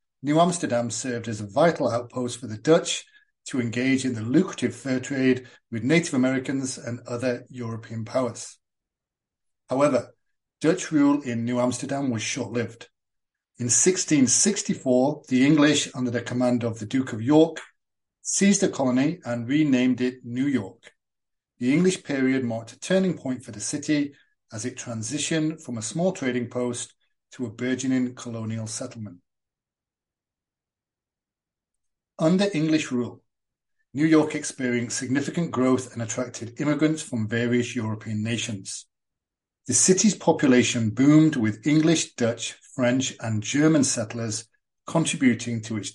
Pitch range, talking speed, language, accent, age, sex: 115-155 Hz, 135 wpm, English, British, 40-59, male